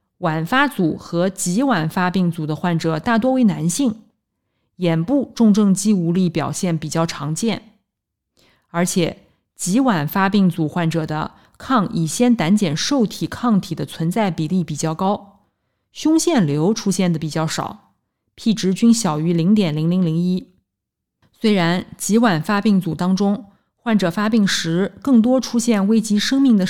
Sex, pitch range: female, 170-225 Hz